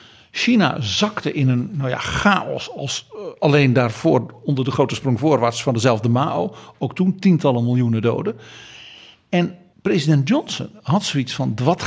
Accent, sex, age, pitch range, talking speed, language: Dutch, male, 50-69, 125-170 Hz, 145 wpm, Dutch